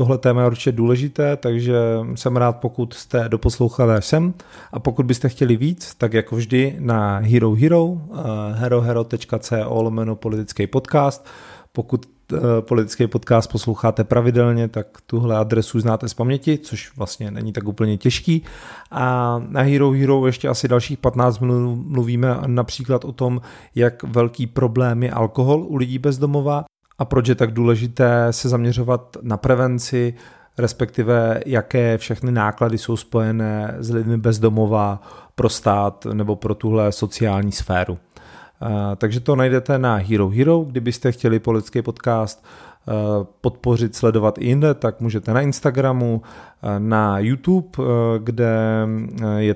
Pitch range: 110-130 Hz